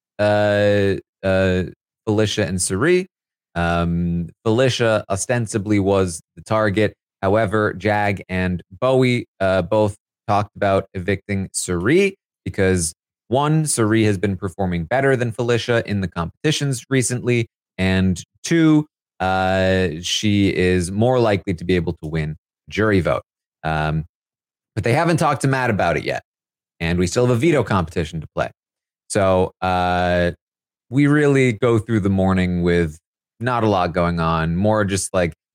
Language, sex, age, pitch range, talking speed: English, male, 30-49, 90-120 Hz, 140 wpm